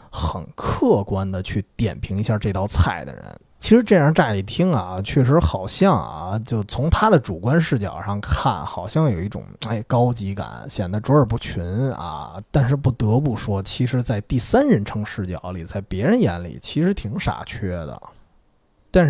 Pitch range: 100-160 Hz